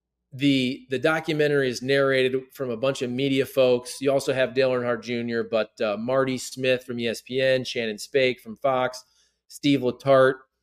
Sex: male